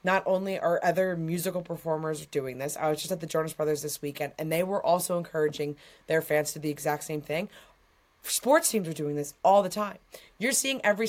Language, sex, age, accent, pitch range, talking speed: English, female, 20-39, American, 155-205 Hz, 220 wpm